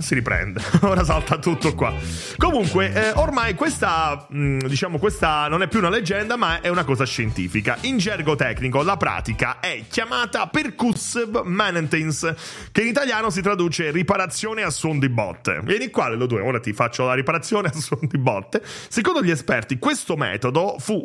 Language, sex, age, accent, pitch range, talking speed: English, male, 30-49, Italian, 125-185 Hz, 175 wpm